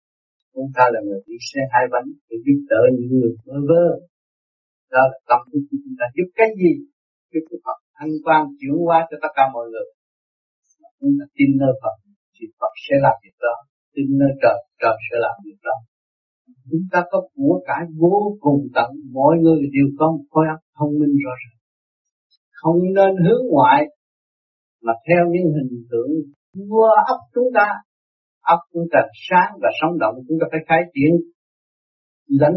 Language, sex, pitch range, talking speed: Vietnamese, male, 120-175 Hz, 175 wpm